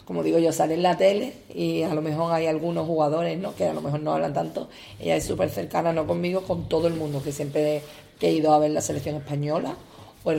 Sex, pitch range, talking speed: female, 145-170 Hz, 245 wpm